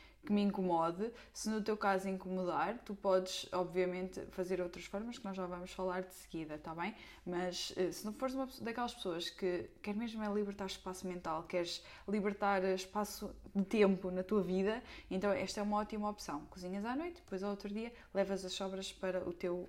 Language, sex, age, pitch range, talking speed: Portuguese, female, 20-39, 180-215 Hz, 190 wpm